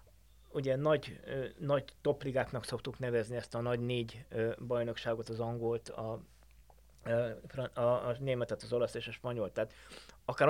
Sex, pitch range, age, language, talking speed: male, 115-130 Hz, 20-39, Hungarian, 150 wpm